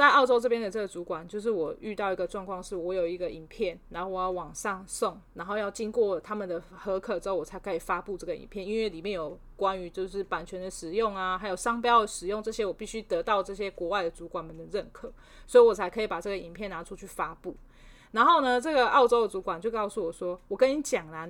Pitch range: 190-270 Hz